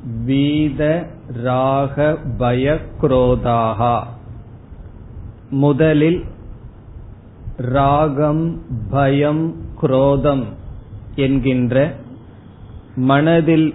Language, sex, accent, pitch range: Tamil, male, native, 115-150 Hz